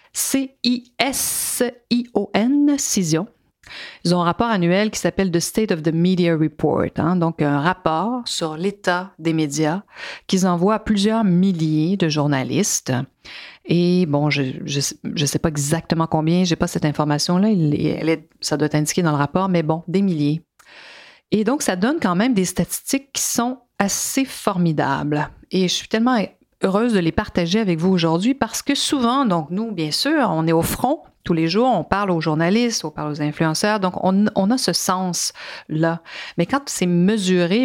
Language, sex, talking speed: French, female, 175 wpm